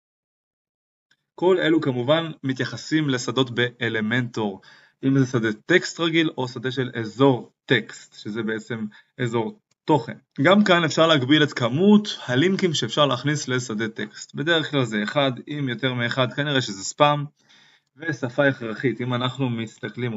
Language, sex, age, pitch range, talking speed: Hebrew, male, 20-39, 115-150 Hz, 135 wpm